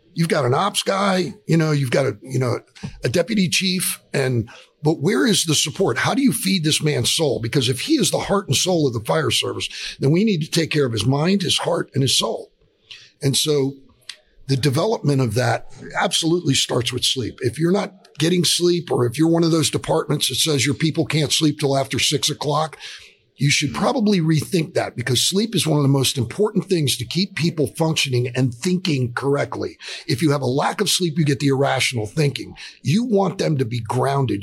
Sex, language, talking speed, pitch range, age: male, English, 220 wpm, 130-170 Hz, 50-69